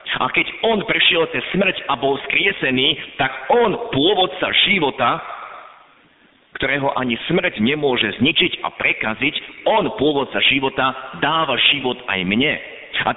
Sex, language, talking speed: male, Slovak, 130 wpm